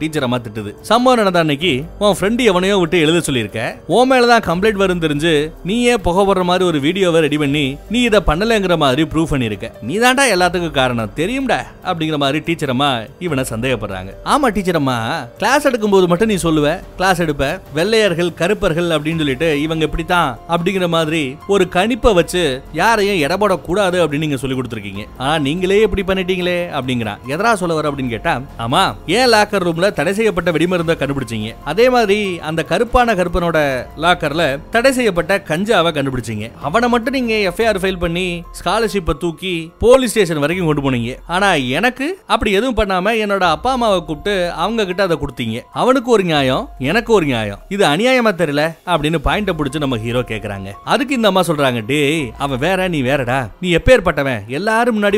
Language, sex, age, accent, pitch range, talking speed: Tamil, male, 30-49, native, 145-200 Hz, 90 wpm